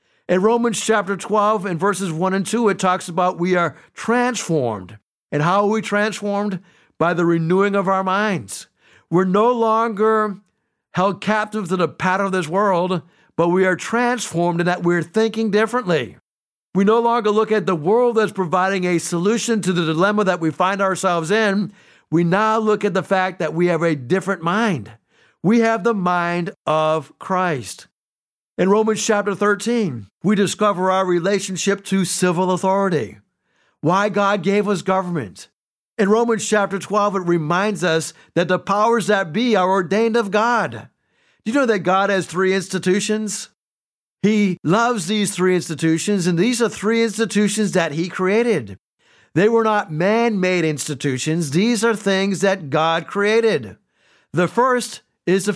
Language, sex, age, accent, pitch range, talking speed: English, male, 60-79, American, 175-215 Hz, 160 wpm